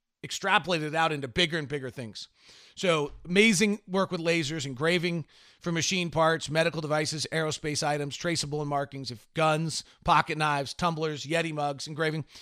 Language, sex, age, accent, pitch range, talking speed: English, male, 40-59, American, 155-200 Hz, 150 wpm